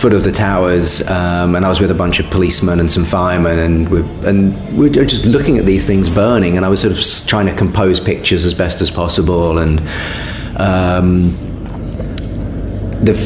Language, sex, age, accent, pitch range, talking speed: English, male, 30-49, British, 90-105 Hz, 190 wpm